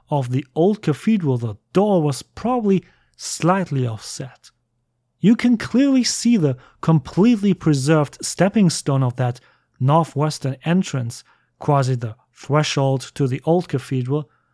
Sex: male